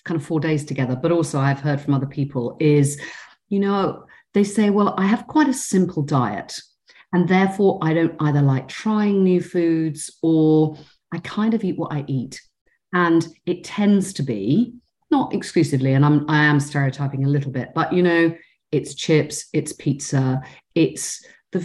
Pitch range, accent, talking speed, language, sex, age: 145-205 Hz, British, 180 wpm, English, female, 40-59